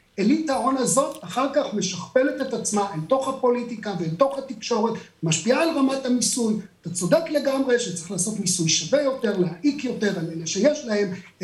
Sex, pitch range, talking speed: male, 185-275 Hz, 175 wpm